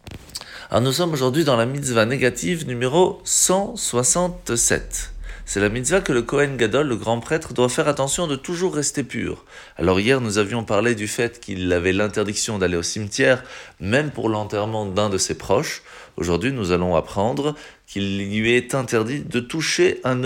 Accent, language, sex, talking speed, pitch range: French, French, male, 170 wpm, 105-155 Hz